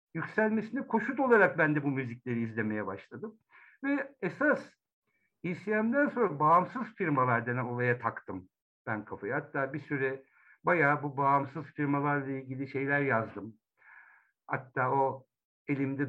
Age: 60-79